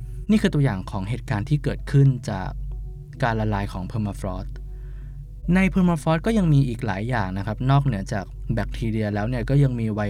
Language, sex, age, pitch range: Thai, male, 20-39, 110-140 Hz